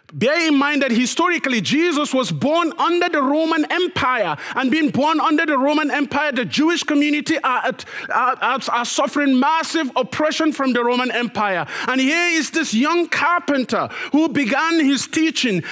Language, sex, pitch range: English, male, 190-315 Hz